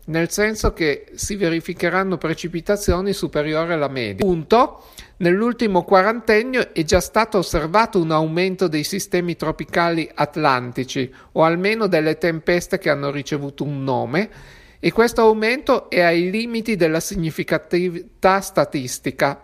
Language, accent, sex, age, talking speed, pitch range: Italian, native, male, 50-69, 120 wpm, 155-195 Hz